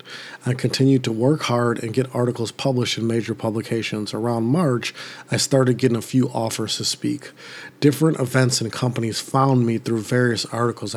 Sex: male